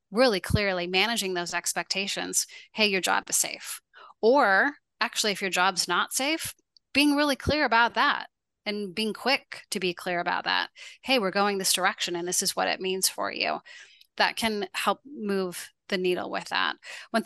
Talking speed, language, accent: 180 wpm, English, American